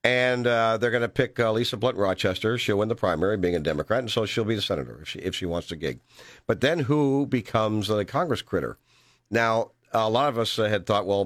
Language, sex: English, male